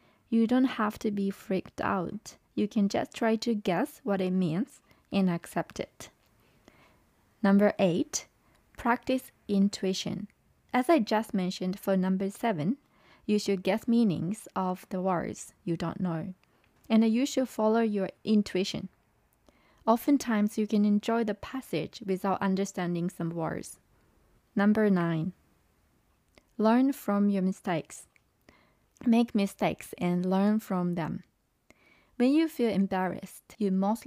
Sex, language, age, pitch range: female, Japanese, 20-39, 190-225 Hz